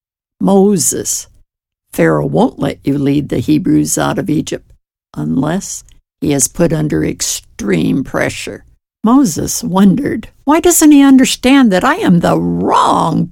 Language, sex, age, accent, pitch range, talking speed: English, female, 60-79, American, 165-240 Hz, 130 wpm